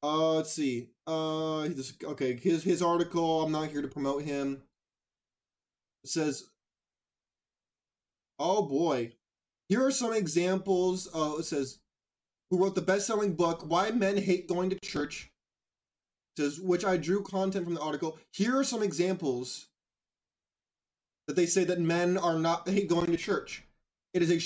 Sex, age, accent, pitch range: male, 20-39, American, 155-195 Hz